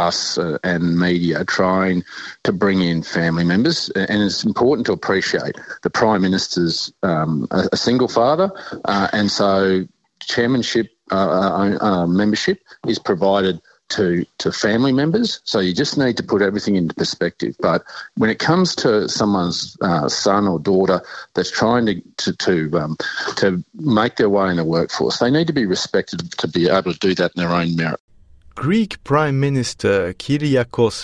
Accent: Australian